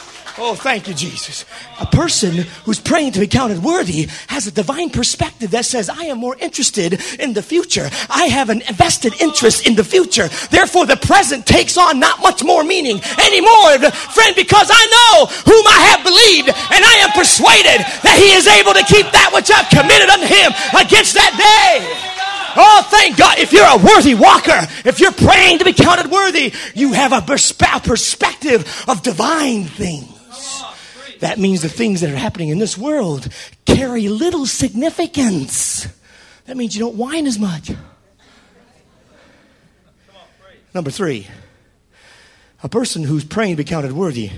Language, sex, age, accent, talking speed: English, male, 40-59, American, 165 wpm